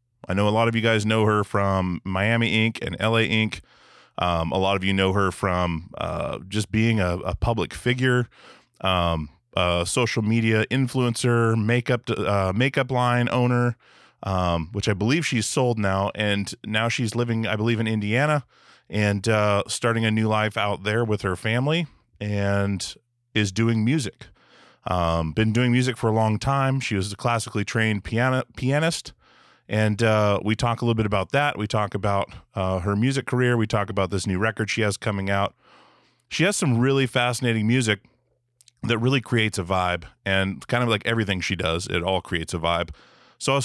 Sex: male